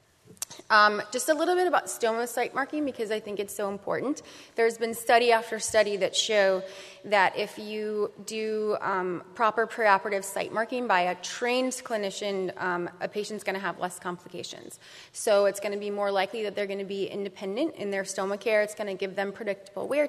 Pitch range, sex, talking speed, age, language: 190-220 Hz, female, 200 wpm, 20-39, English